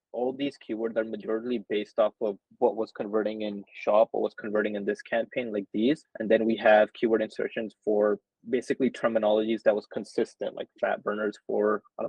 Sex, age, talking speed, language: male, 20-39, 195 wpm, English